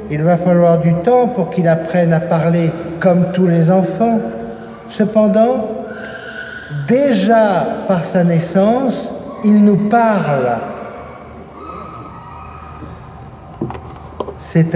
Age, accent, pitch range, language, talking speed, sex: 60-79, French, 170-205 Hz, French, 95 wpm, male